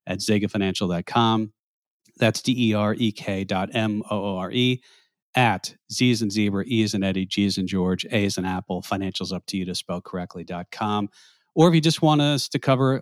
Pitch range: 100-125 Hz